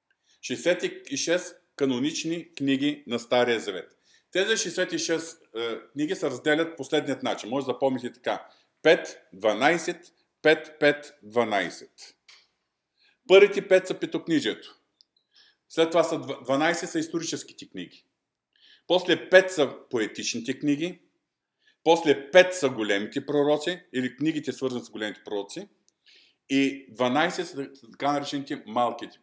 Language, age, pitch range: Bulgarian, 50-69, 130-165 Hz